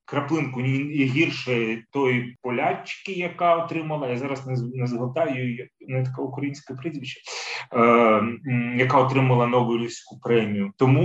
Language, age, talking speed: Ukrainian, 30-49, 105 wpm